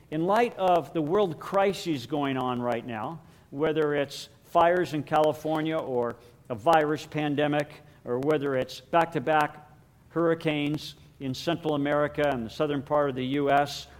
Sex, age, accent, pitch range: male, 50-69, American, 135-170 Hz